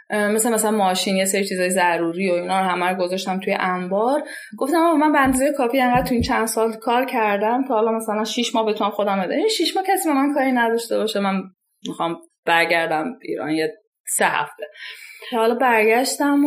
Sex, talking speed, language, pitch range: female, 200 wpm, Persian, 180-240 Hz